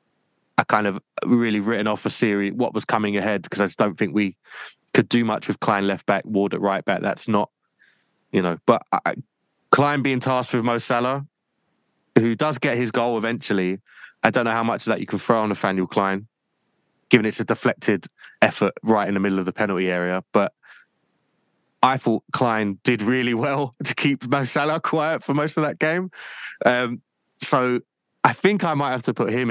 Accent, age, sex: British, 20-39, male